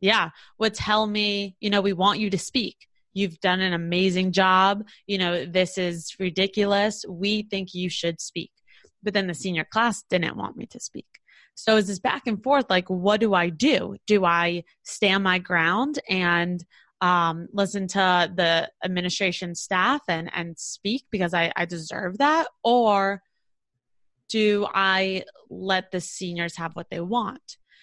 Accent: American